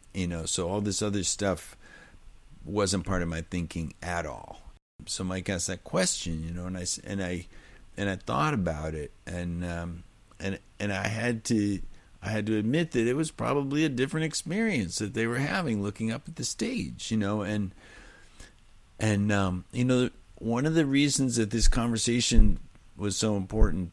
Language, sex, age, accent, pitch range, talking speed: English, male, 50-69, American, 90-110 Hz, 185 wpm